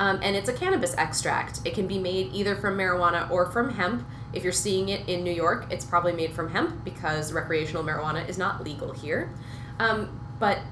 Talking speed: 205 wpm